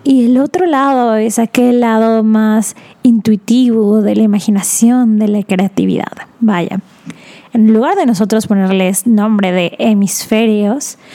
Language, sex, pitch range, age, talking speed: Spanish, female, 215-250 Hz, 20-39, 130 wpm